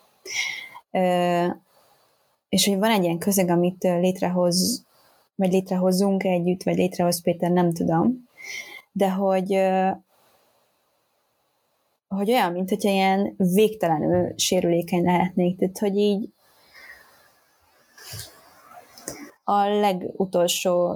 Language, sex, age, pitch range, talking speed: Hungarian, female, 20-39, 180-210 Hz, 95 wpm